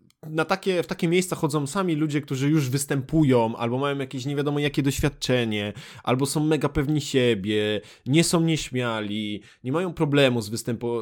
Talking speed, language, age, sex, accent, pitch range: 170 wpm, Polish, 20-39, male, native, 115-145 Hz